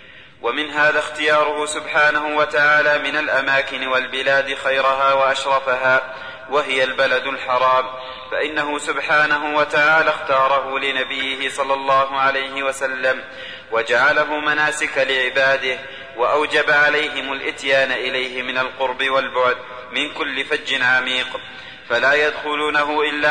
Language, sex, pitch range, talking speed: Arabic, male, 130-150 Hz, 100 wpm